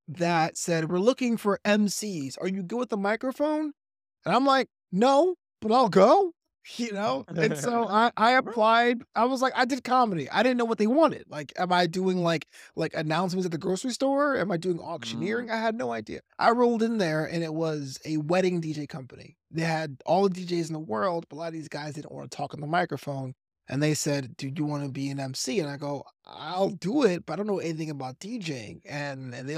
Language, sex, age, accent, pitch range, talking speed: English, male, 20-39, American, 160-235 Hz, 235 wpm